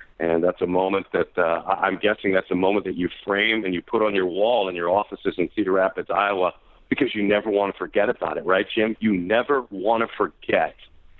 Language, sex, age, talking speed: English, male, 50-69, 225 wpm